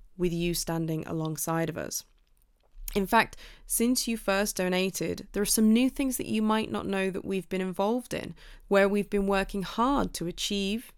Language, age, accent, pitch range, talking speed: English, 20-39, British, 165-200 Hz, 185 wpm